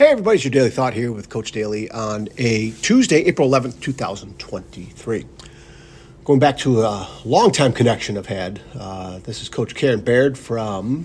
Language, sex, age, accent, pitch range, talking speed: English, male, 50-69, American, 110-135 Hz, 175 wpm